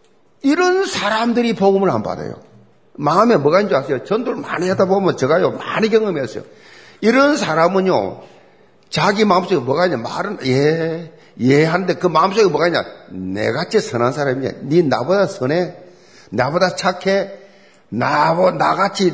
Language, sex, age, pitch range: Korean, male, 50-69, 155-225 Hz